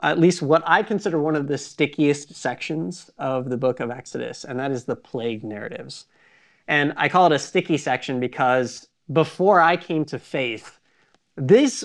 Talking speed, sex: 175 wpm, male